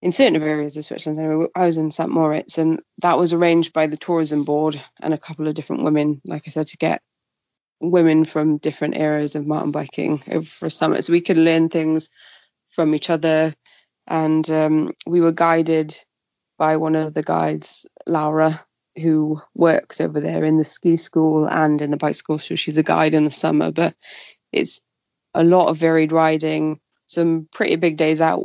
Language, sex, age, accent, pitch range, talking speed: English, female, 20-39, British, 155-175 Hz, 190 wpm